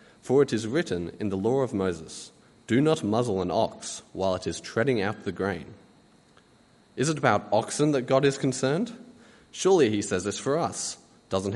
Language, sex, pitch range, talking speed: English, male, 95-135 Hz, 185 wpm